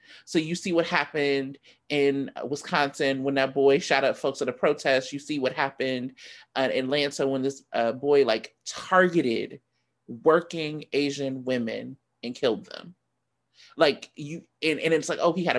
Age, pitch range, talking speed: 20-39, 135-165 Hz, 160 wpm